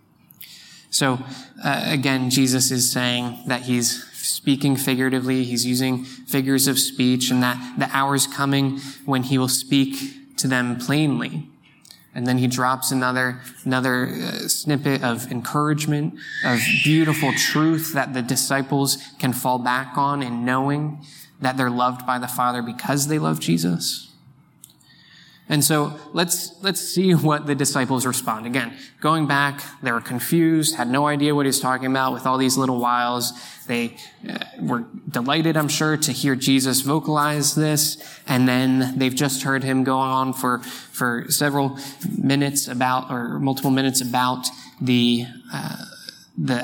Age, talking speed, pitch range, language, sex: 20-39, 150 wpm, 125-145 Hz, English, male